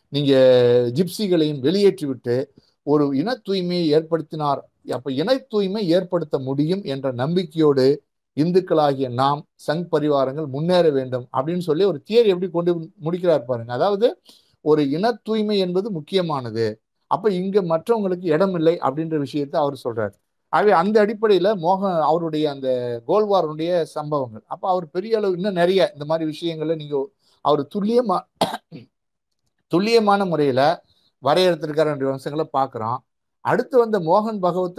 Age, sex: 50-69, male